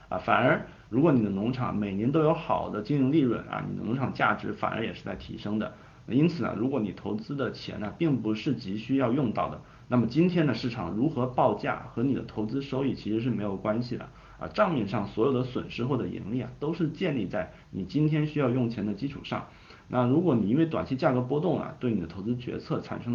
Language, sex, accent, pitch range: Chinese, male, native, 105-130 Hz